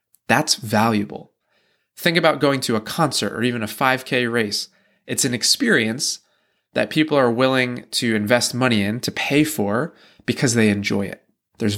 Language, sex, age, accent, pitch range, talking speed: English, male, 20-39, American, 110-135 Hz, 165 wpm